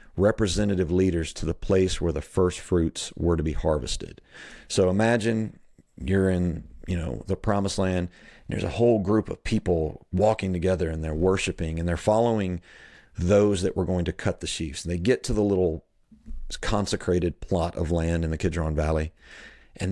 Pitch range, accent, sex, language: 85-100 Hz, American, male, English